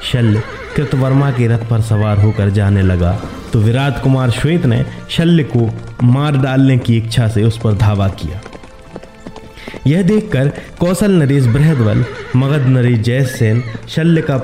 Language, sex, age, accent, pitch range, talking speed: Hindi, male, 30-49, native, 110-140 Hz, 145 wpm